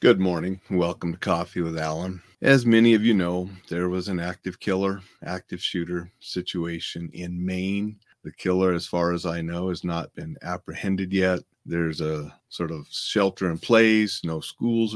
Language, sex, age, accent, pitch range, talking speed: English, male, 40-59, American, 85-95 Hz, 175 wpm